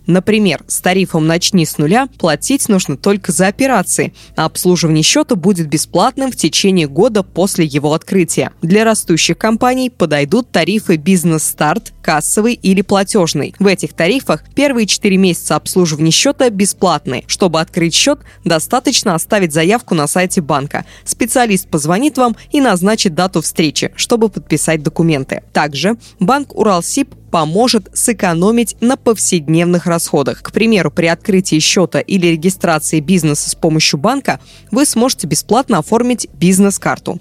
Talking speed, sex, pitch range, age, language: 135 wpm, female, 160-215 Hz, 20-39, Russian